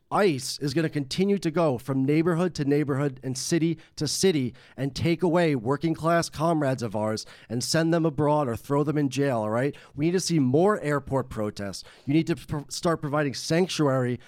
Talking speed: 200 wpm